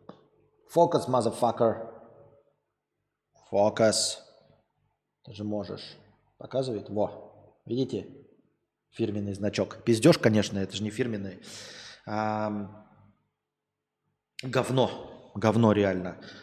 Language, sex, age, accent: Russian, male, 20-39, native